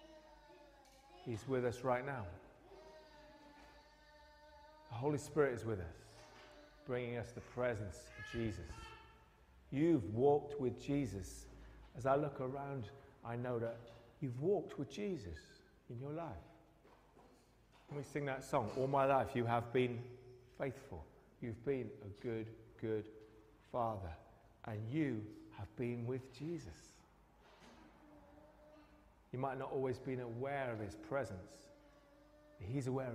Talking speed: 125 wpm